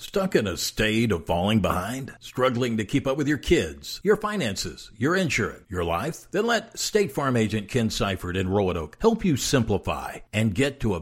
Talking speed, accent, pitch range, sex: 195 wpm, American, 110-165 Hz, male